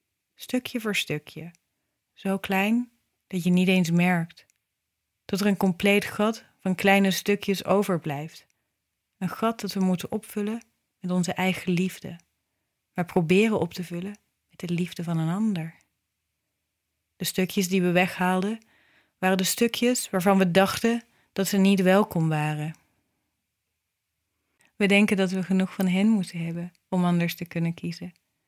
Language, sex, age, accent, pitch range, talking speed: Dutch, female, 30-49, Dutch, 165-200 Hz, 150 wpm